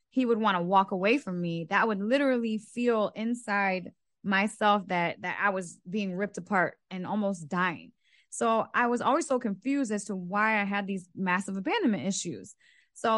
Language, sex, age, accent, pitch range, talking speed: English, female, 20-39, American, 190-230 Hz, 180 wpm